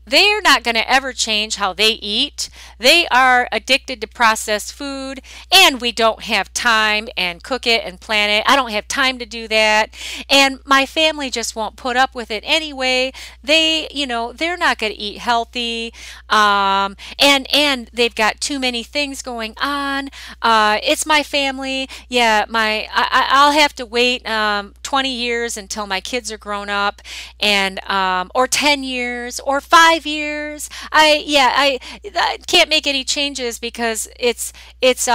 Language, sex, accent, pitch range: English, female, American, 205-270 Hz